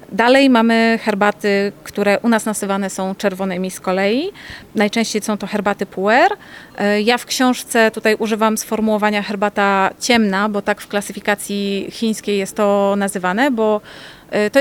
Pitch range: 200-230 Hz